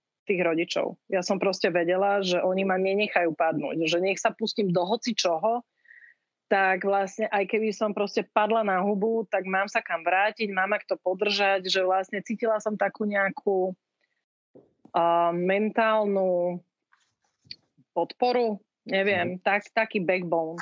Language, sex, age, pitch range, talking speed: Slovak, female, 30-49, 175-210 Hz, 145 wpm